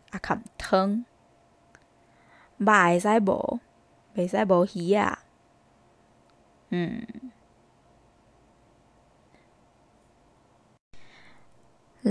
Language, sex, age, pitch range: Chinese, female, 20-39, 195-240 Hz